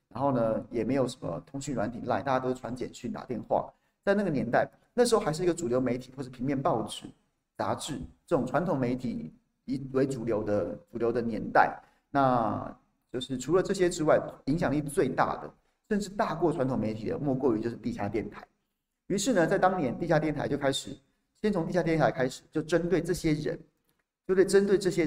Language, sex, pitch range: Chinese, male, 130-185 Hz